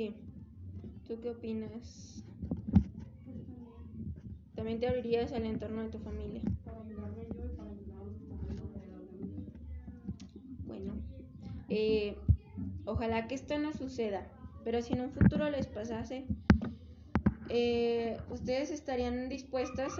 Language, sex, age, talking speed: Spanish, female, 20-39, 85 wpm